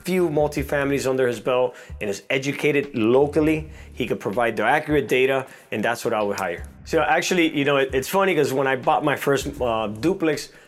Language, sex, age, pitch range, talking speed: English, male, 30-49, 110-150 Hz, 200 wpm